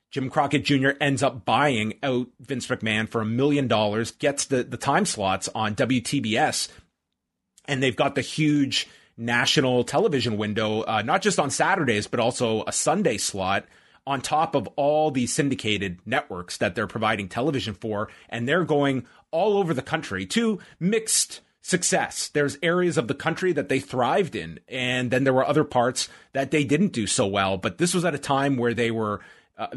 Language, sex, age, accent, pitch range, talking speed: English, male, 30-49, American, 110-145 Hz, 185 wpm